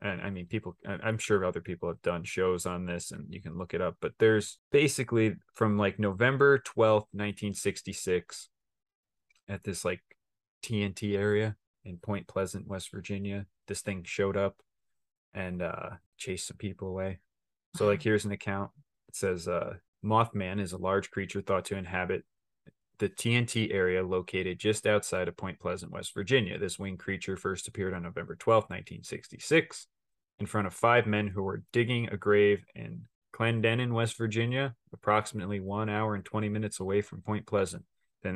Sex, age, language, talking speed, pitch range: male, 20-39, English, 170 wpm, 95-110 Hz